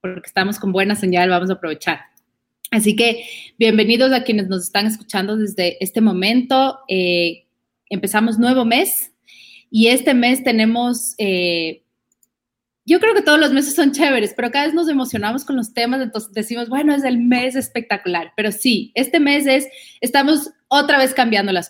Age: 30-49